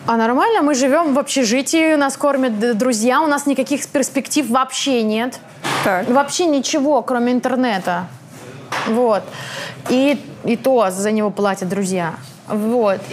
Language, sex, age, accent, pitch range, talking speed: Russian, female, 20-39, native, 225-305 Hz, 130 wpm